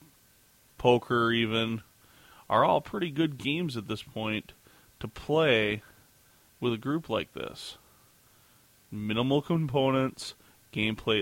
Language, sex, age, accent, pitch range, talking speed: English, male, 30-49, American, 105-130 Hz, 105 wpm